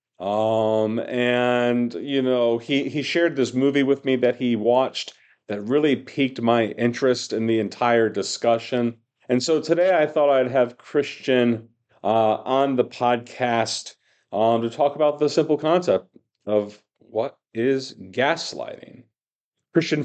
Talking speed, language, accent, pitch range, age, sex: 140 wpm, English, American, 105-135 Hz, 40-59, male